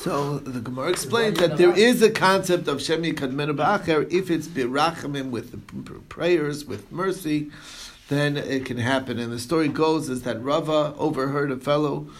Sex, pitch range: male, 130-170 Hz